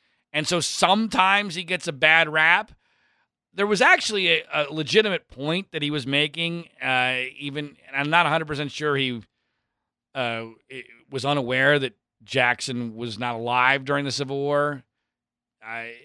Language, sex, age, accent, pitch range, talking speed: English, male, 40-59, American, 145-205 Hz, 150 wpm